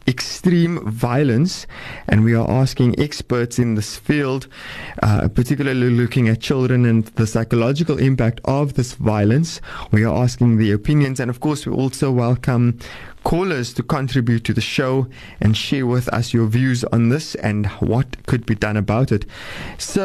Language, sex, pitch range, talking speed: English, male, 110-140 Hz, 165 wpm